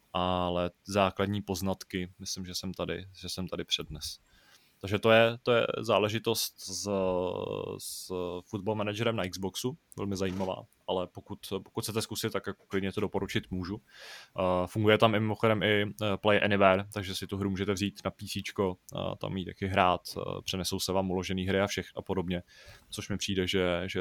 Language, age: Czech, 20-39